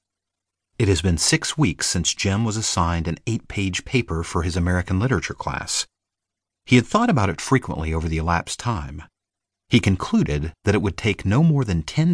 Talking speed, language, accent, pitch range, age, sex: 185 wpm, English, American, 80-110 Hz, 40-59, male